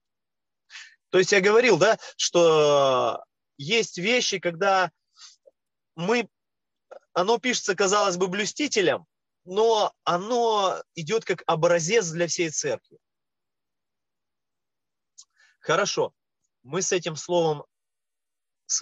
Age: 20-39